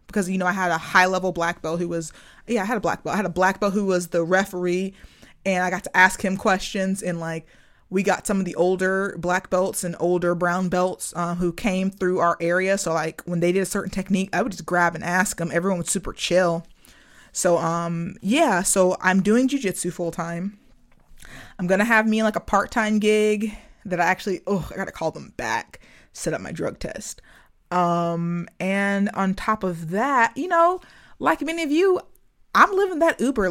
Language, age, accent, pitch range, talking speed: English, 20-39, American, 175-205 Hz, 220 wpm